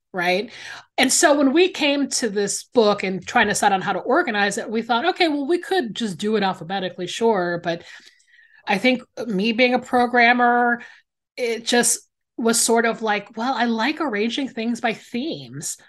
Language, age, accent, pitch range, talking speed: English, 30-49, American, 190-255 Hz, 185 wpm